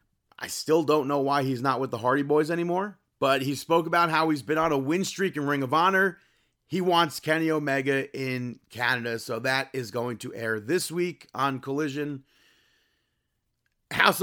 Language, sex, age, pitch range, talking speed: English, male, 30-49, 140-180 Hz, 185 wpm